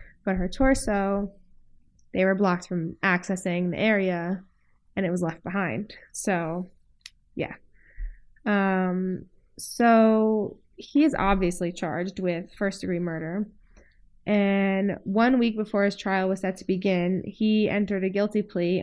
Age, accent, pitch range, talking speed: 20-39, American, 185-215 Hz, 135 wpm